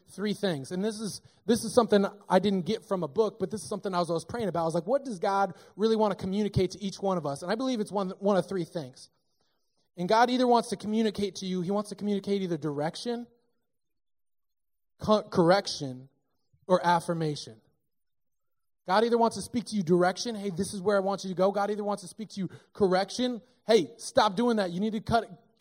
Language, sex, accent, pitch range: English, male, American, 180-220 Hz